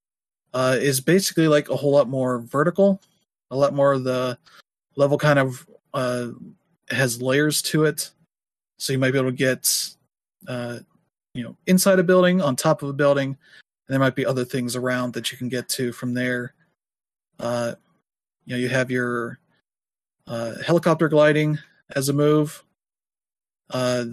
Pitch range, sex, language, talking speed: 125-145 Hz, male, English, 165 wpm